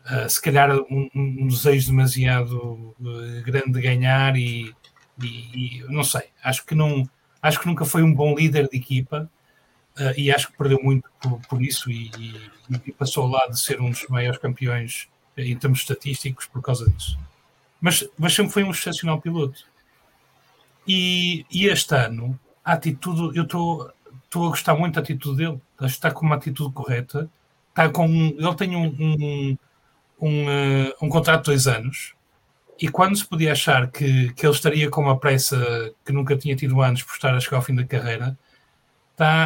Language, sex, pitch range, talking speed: English, male, 130-160 Hz, 190 wpm